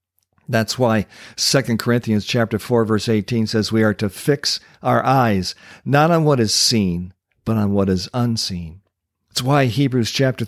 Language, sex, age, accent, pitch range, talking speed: English, male, 50-69, American, 95-125 Hz, 165 wpm